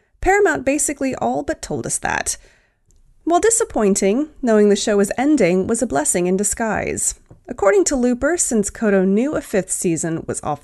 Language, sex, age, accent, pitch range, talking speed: English, female, 30-49, American, 185-295 Hz, 170 wpm